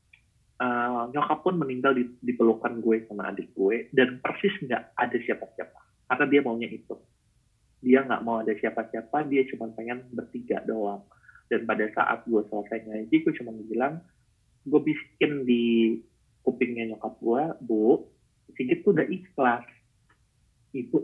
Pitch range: 115-135 Hz